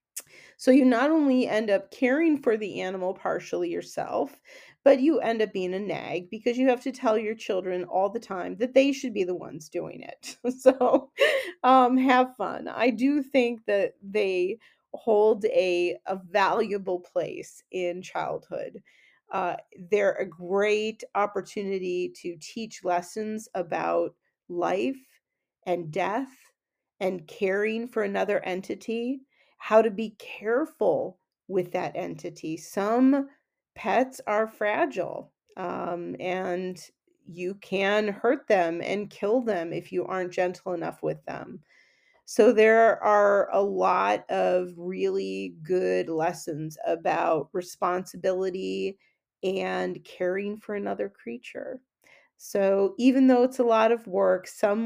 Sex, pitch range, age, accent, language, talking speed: female, 180-245 Hz, 40-59, American, English, 135 wpm